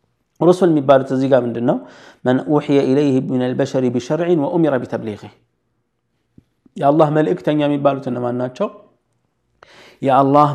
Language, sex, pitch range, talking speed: Amharic, male, 120-145 Hz, 125 wpm